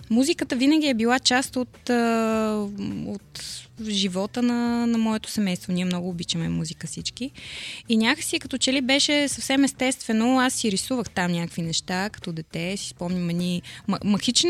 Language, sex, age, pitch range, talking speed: Bulgarian, female, 20-39, 185-245 Hz, 155 wpm